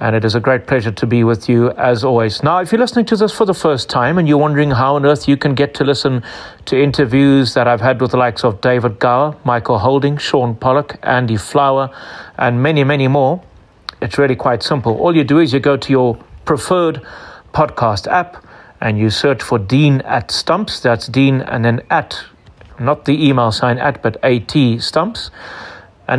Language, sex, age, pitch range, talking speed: English, male, 40-59, 120-145 Hz, 205 wpm